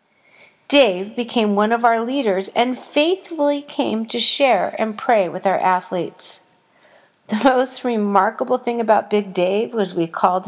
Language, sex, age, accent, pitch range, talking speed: English, female, 40-59, American, 195-265 Hz, 150 wpm